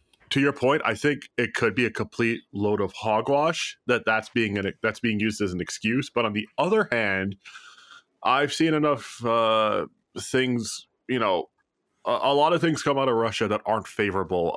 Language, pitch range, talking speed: English, 100-120 Hz, 195 wpm